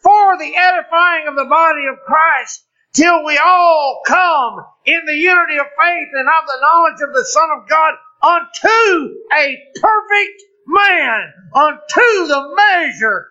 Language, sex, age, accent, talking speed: English, male, 50-69, American, 150 wpm